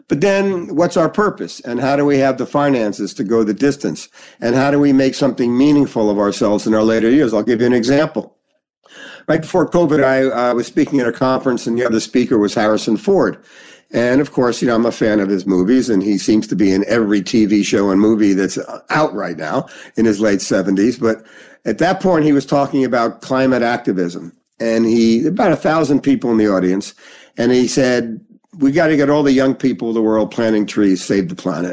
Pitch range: 105-145 Hz